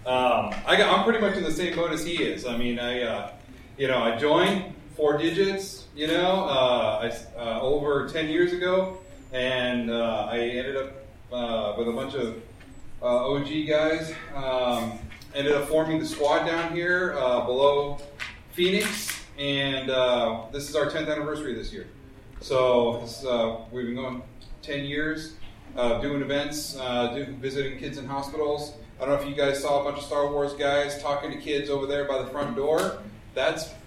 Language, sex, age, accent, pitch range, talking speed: English, male, 30-49, American, 120-150 Hz, 190 wpm